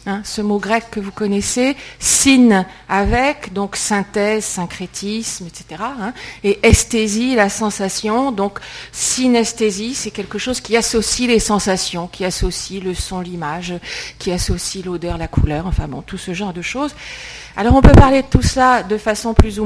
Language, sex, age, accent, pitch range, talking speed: French, female, 50-69, French, 195-235 Hz, 170 wpm